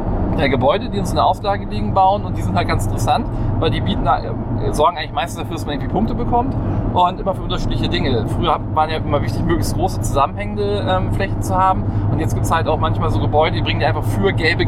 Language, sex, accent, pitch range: German, male, German, 110-130 Hz